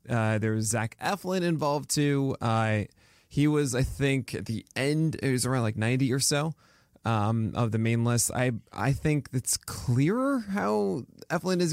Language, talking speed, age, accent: English, 180 wpm, 20-39, American